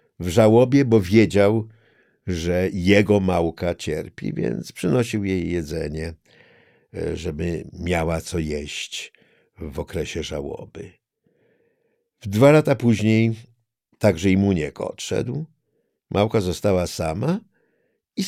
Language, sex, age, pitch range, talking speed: Polish, male, 60-79, 90-135 Hz, 100 wpm